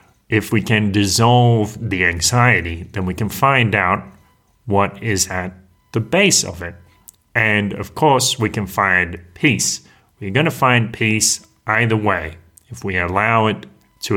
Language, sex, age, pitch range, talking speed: English, male, 30-49, 95-120 Hz, 155 wpm